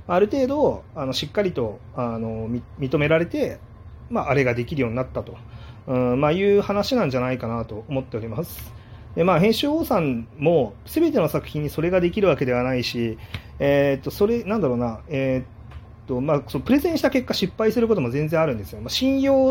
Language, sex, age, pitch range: Japanese, male, 30-49, 120-195 Hz